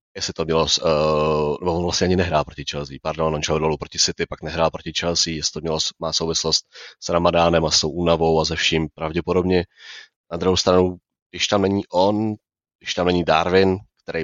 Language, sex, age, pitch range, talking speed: Slovak, male, 30-49, 80-95 Hz, 200 wpm